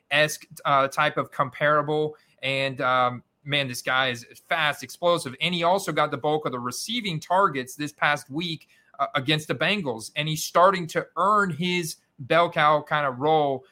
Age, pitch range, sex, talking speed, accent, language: 40-59, 130-160 Hz, male, 180 wpm, American, English